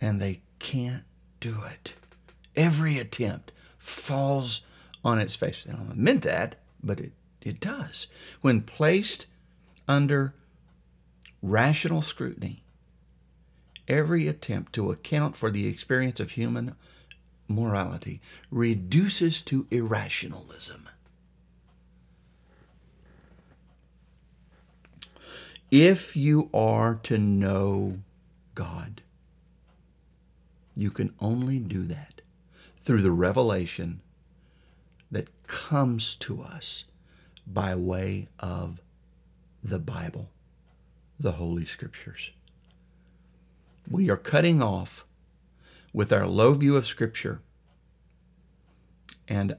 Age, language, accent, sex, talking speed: 60-79, English, American, male, 90 wpm